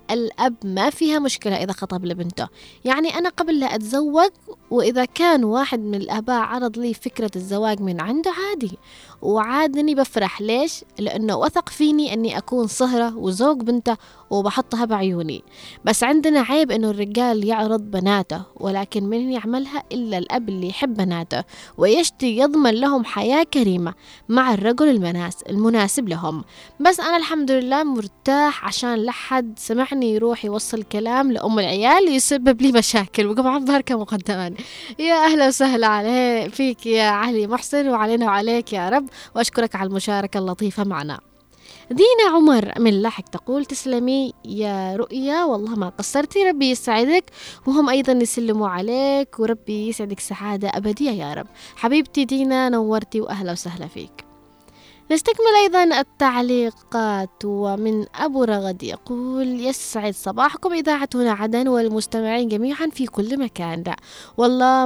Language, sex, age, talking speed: Arabic, female, 20-39, 135 wpm